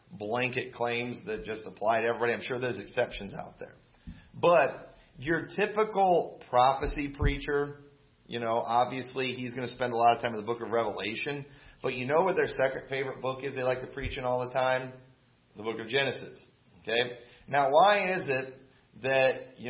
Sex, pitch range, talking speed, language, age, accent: male, 120-140 Hz, 190 wpm, English, 40-59, American